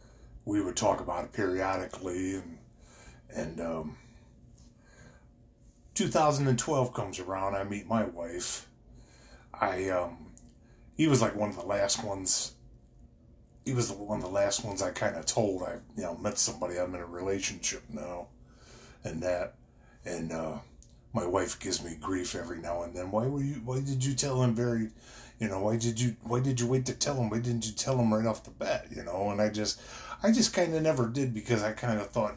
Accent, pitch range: American, 90-120 Hz